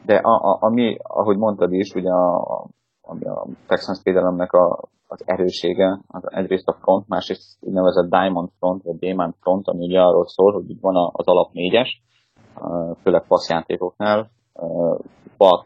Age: 20-39